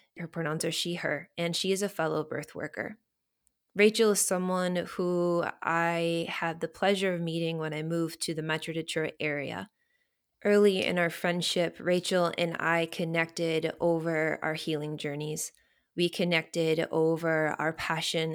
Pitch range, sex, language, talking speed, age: 160-180 Hz, female, English, 155 wpm, 20-39